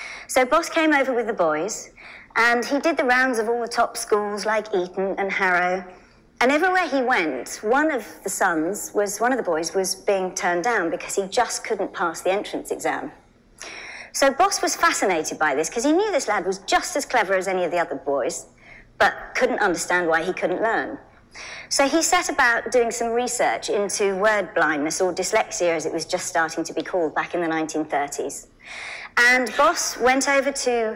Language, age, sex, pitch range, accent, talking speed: English, 40-59, male, 185-250 Hz, British, 200 wpm